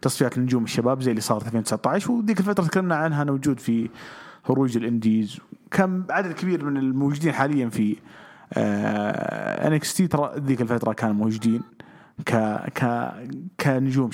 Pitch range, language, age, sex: 115-175 Hz, English, 30-49, male